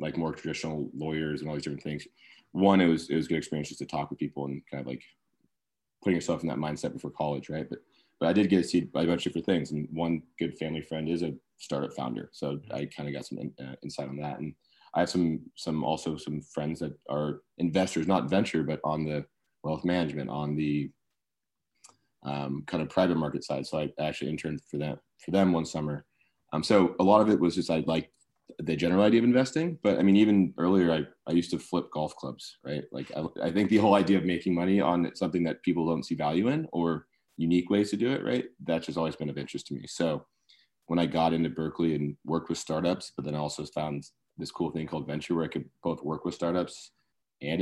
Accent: American